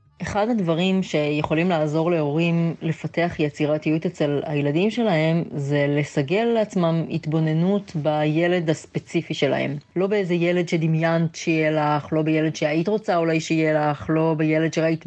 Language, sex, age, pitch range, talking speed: Hebrew, female, 30-49, 155-185 Hz, 130 wpm